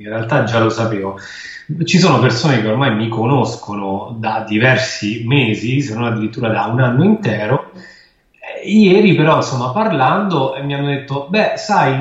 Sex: male